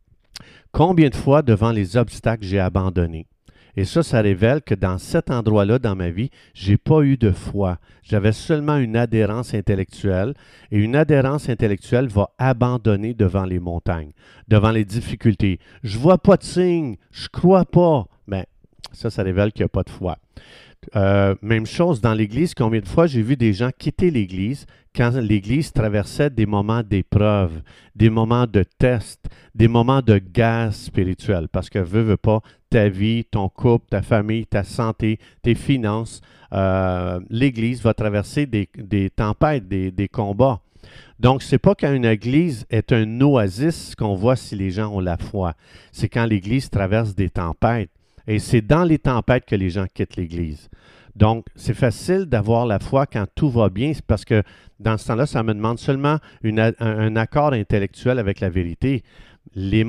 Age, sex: 50-69, male